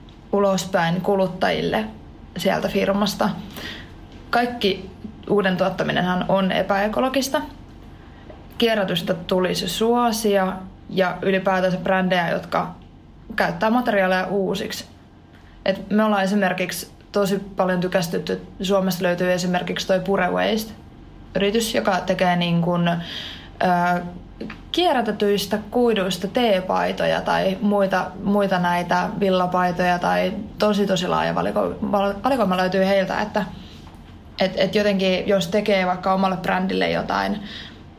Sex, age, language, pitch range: female, 20-39, Finnish, 180-205 Hz